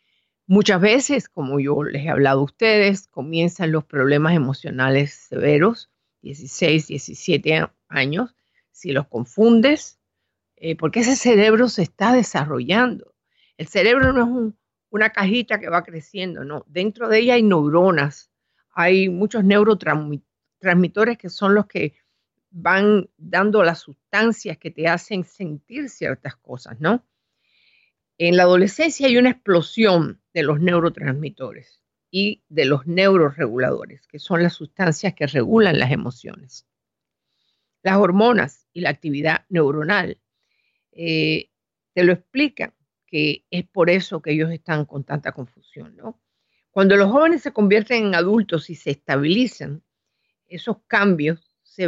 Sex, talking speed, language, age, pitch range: female, 135 wpm, Spanish, 50-69, 155-210 Hz